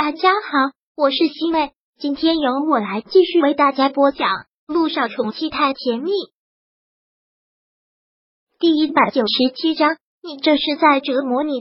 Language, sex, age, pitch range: Chinese, male, 30-49, 265-325 Hz